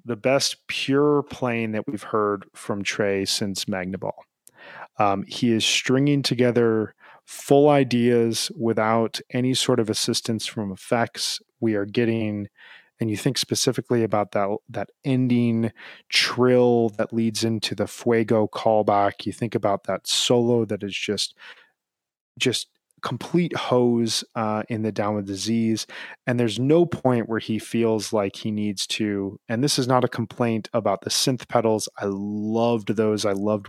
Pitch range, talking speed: 100-120 Hz, 155 wpm